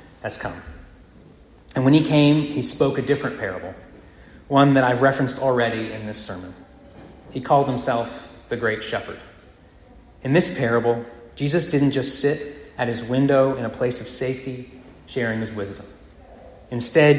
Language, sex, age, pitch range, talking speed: English, male, 30-49, 110-140 Hz, 155 wpm